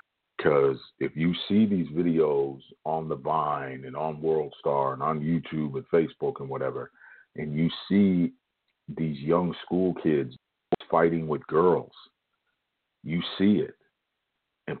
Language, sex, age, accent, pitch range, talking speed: English, male, 50-69, American, 75-95 Hz, 135 wpm